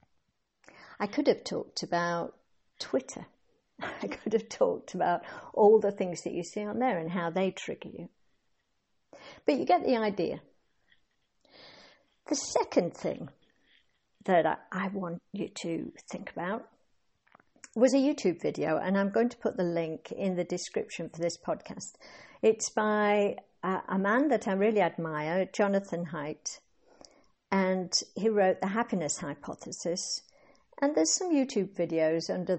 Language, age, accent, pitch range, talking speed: English, 60-79, British, 180-235 Hz, 145 wpm